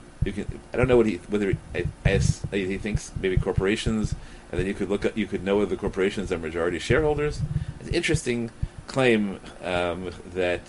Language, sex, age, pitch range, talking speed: English, male, 30-49, 95-125 Hz, 215 wpm